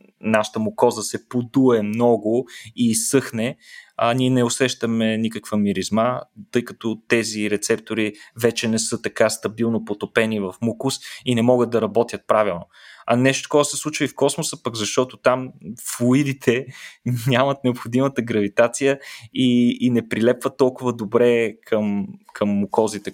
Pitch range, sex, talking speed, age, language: 105-125 Hz, male, 145 wpm, 20-39, Bulgarian